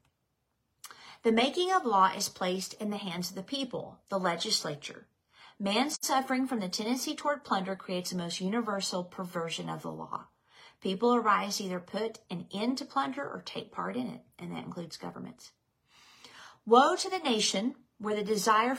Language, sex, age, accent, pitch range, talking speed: English, female, 40-59, American, 180-230 Hz, 170 wpm